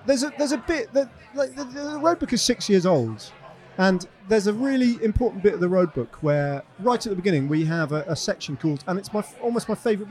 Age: 40-59